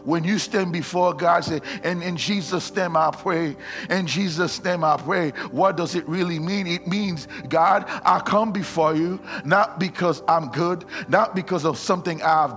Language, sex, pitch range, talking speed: English, male, 175-295 Hz, 185 wpm